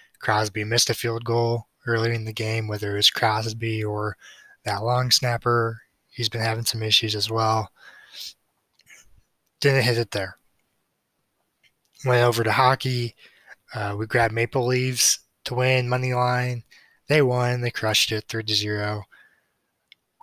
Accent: American